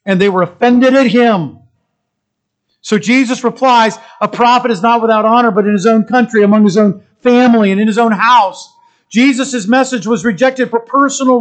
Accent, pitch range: American, 180-260 Hz